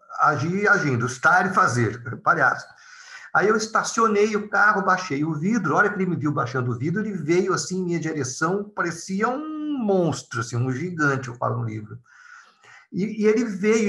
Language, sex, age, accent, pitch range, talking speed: Portuguese, male, 50-69, Brazilian, 145-210 Hz, 185 wpm